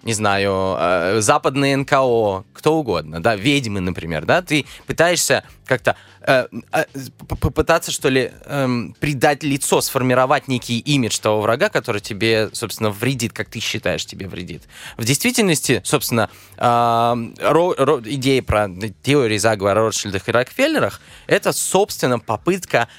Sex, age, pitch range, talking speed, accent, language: male, 20-39, 110-150 Hz, 135 wpm, native, Russian